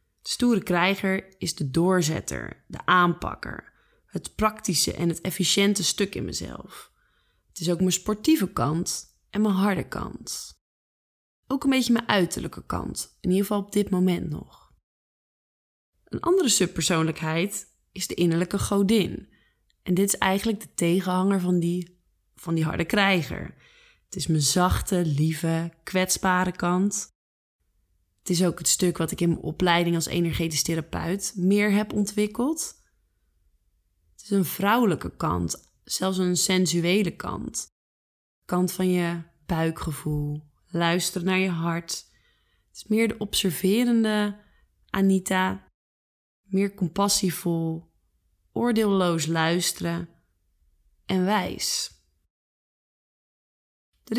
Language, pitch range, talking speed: Dutch, 160-195 Hz, 125 wpm